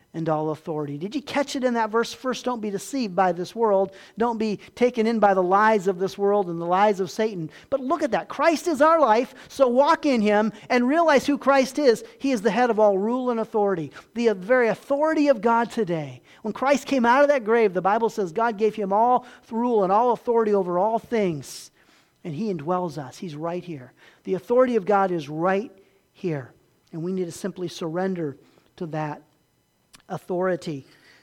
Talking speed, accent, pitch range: 210 wpm, American, 180-235 Hz